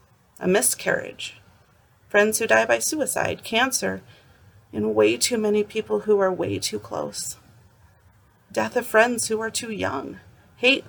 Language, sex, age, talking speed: English, female, 40-59, 145 wpm